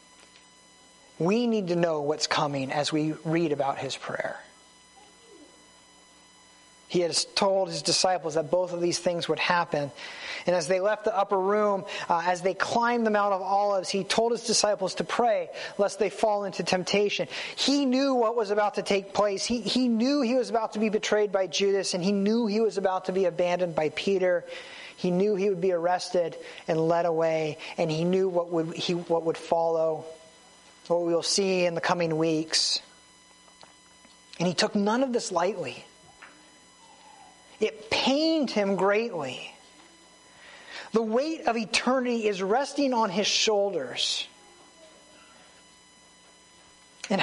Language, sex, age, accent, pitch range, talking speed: English, male, 30-49, American, 175-230 Hz, 160 wpm